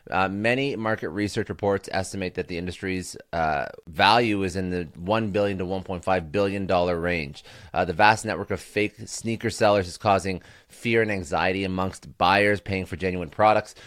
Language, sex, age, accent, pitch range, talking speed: English, male, 30-49, American, 90-110 Hz, 170 wpm